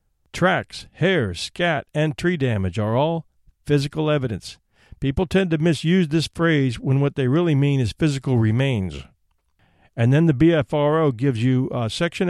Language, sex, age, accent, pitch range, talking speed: English, male, 50-69, American, 115-150 Hz, 155 wpm